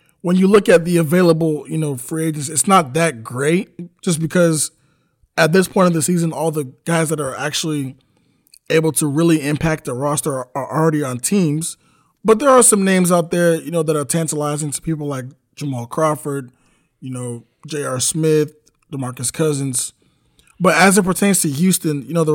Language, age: English, 20-39